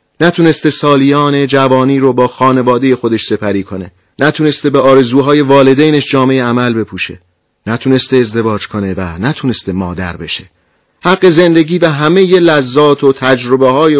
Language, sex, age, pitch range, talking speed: Persian, male, 40-59, 115-145 Hz, 135 wpm